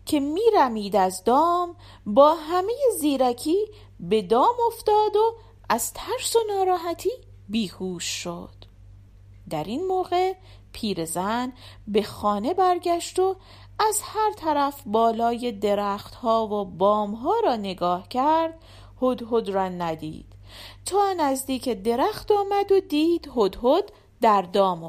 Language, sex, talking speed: Persian, female, 115 wpm